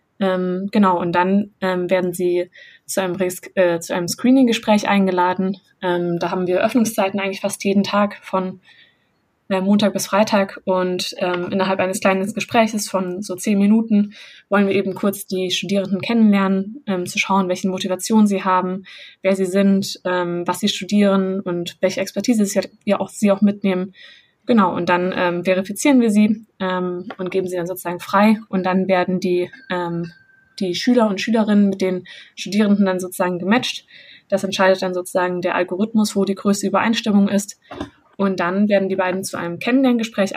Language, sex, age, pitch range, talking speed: German, female, 20-39, 185-205 Hz, 165 wpm